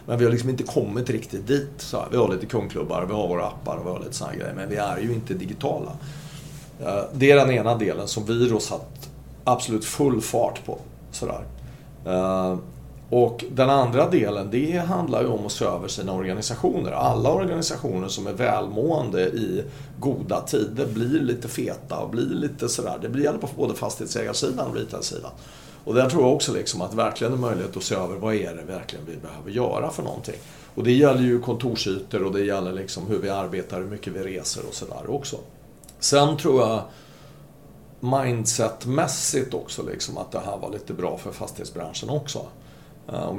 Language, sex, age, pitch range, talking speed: Swedish, male, 40-59, 100-140 Hz, 185 wpm